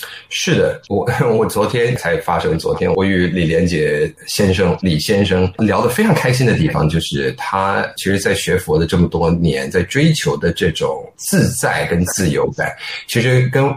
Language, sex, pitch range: Chinese, male, 115-175 Hz